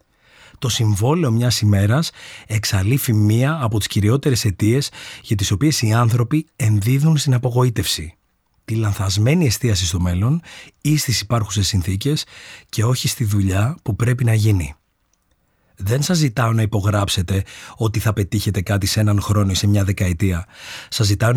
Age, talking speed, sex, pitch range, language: 30-49, 150 wpm, male, 100-125 Hz, Greek